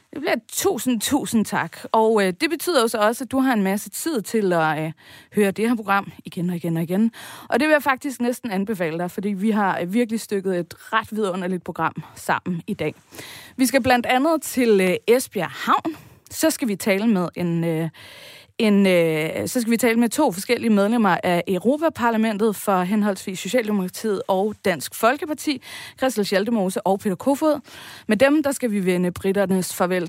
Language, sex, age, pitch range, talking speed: Danish, female, 20-39, 185-245 Hz, 190 wpm